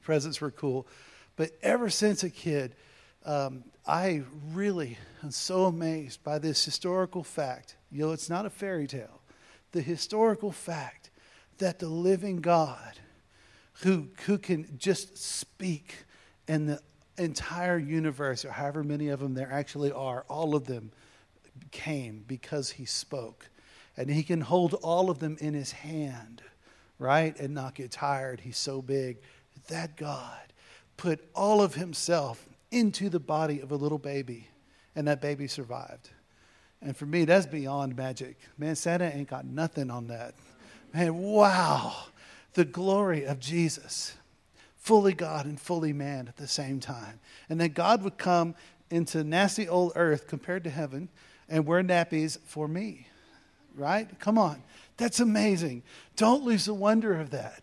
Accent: American